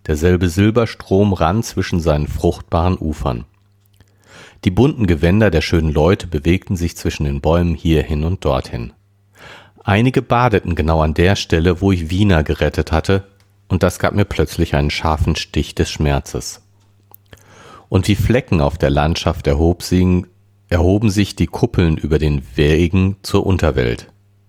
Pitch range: 80-100 Hz